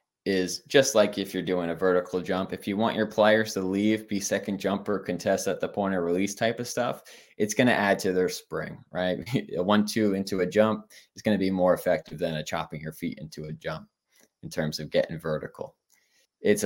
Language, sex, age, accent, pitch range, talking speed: English, male, 20-39, American, 90-105 Hz, 215 wpm